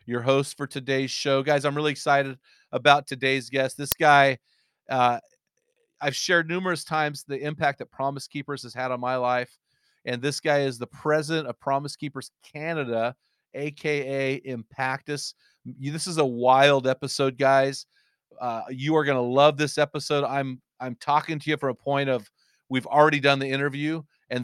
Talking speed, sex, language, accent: 170 wpm, male, English, American